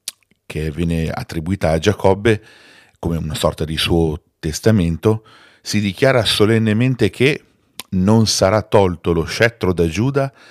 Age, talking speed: 40-59, 125 wpm